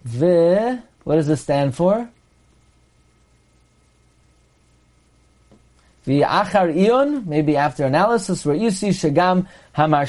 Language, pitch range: English, 145-205 Hz